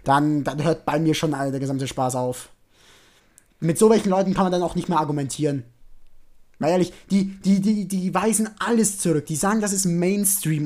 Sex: male